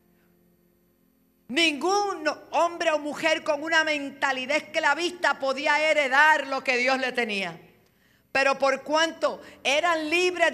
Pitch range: 250-305 Hz